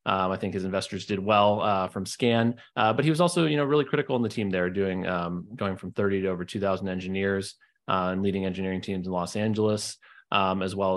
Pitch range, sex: 95-115 Hz, male